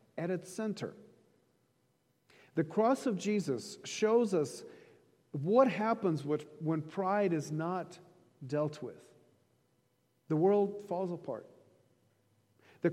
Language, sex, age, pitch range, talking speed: English, male, 50-69, 135-185 Hz, 105 wpm